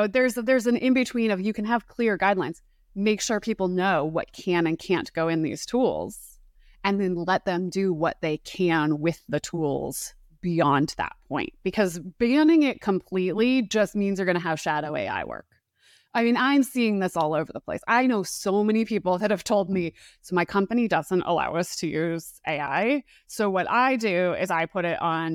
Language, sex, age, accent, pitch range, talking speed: English, female, 20-39, American, 175-235 Hz, 205 wpm